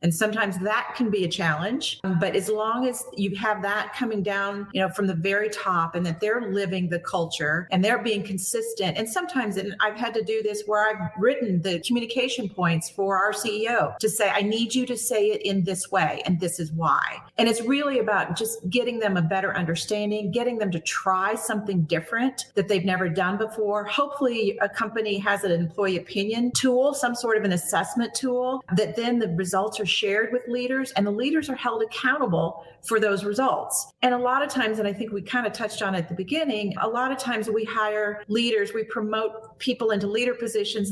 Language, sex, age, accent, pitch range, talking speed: English, female, 40-59, American, 190-230 Hz, 215 wpm